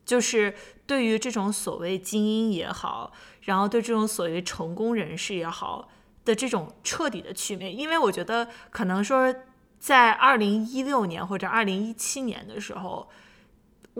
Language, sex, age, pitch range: Chinese, female, 20-39, 200-250 Hz